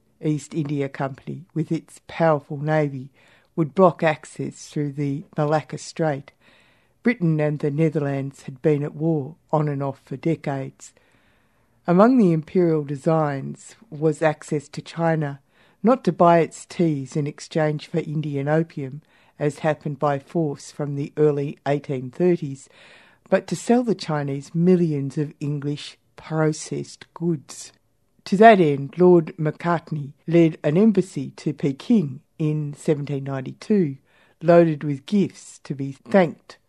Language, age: English, 60-79